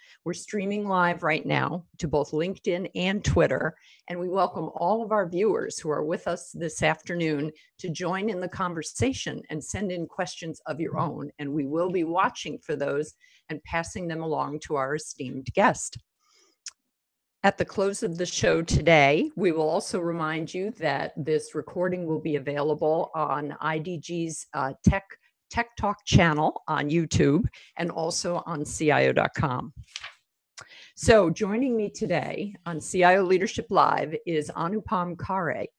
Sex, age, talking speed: female, 50-69, 155 wpm